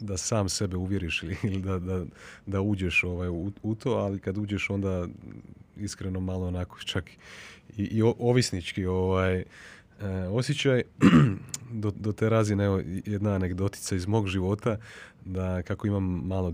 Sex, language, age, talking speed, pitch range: male, Croatian, 30-49, 150 wpm, 90-105 Hz